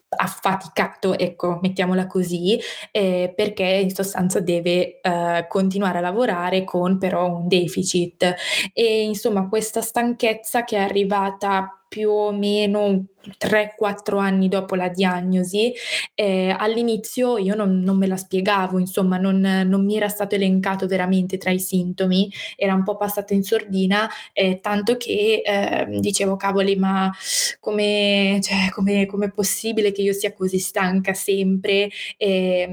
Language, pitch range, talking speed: Italian, 185-210 Hz, 140 wpm